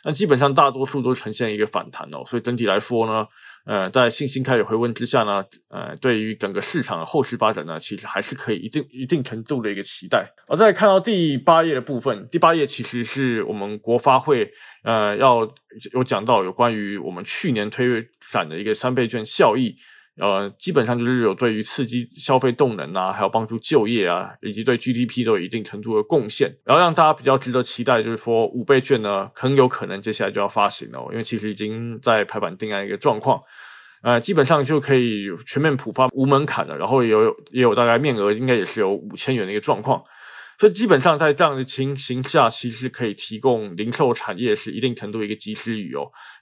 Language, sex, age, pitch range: Chinese, male, 20-39, 110-135 Hz